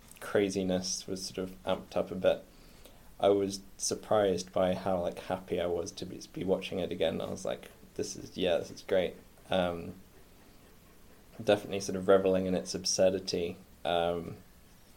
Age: 20-39